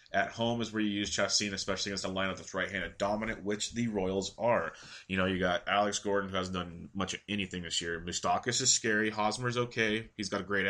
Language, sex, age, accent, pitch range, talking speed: English, male, 30-49, American, 90-105 Hz, 230 wpm